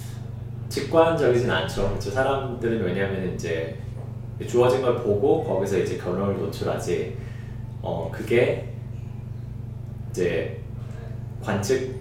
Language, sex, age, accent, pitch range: Korean, male, 30-49, native, 110-120 Hz